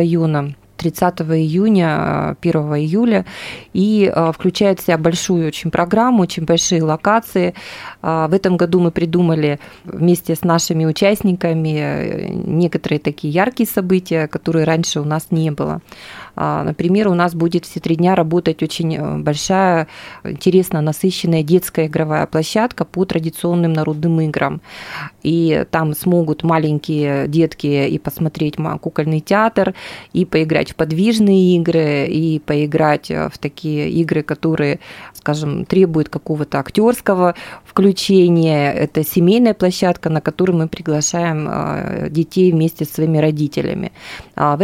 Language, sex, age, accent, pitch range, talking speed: Russian, female, 20-39, native, 155-185 Hz, 120 wpm